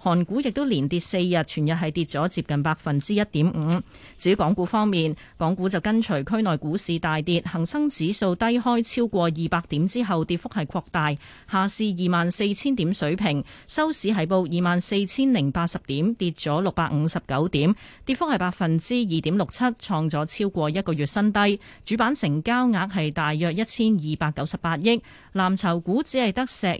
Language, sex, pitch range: Chinese, female, 160-215 Hz